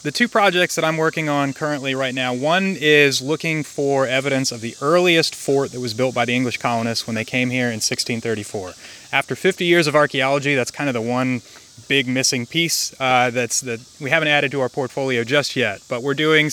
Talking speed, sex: 220 wpm, male